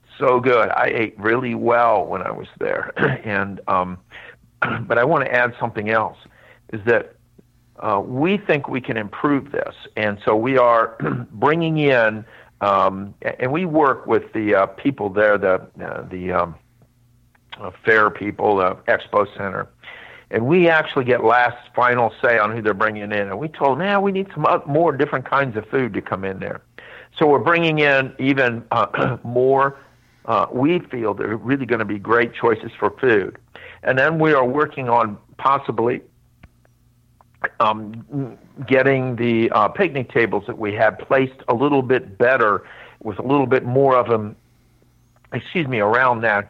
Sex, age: male, 50-69